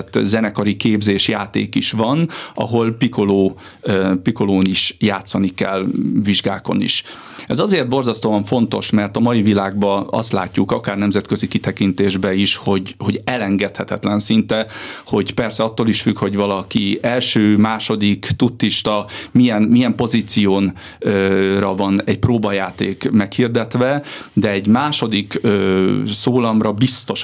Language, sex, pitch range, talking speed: Hungarian, male, 100-120 Hz, 125 wpm